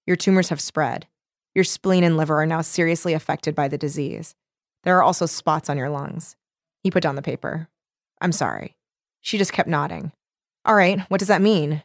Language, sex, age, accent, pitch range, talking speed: English, female, 20-39, American, 160-200 Hz, 200 wpm